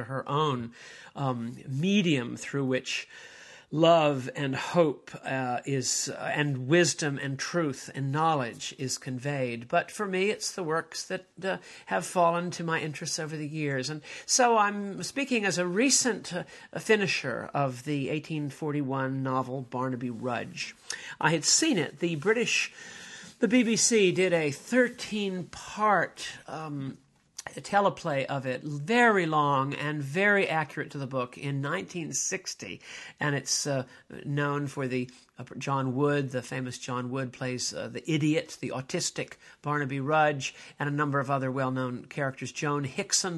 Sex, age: male, 50-69